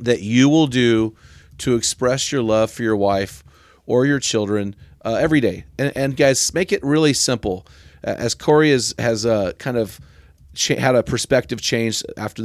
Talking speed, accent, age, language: 185 wpm, American, 40-59, English